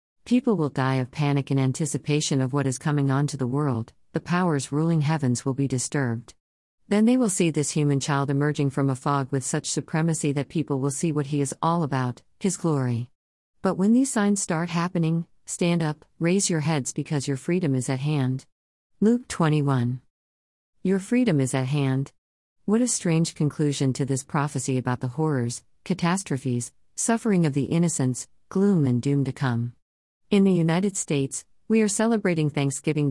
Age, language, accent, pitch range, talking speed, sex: 50-69, English, American, 135-170 Hz, 180 wpm, female